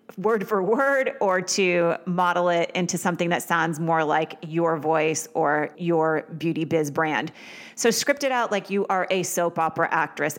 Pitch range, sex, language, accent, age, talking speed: 160-205 Hz, female, English, American, 30-49, 180 wpm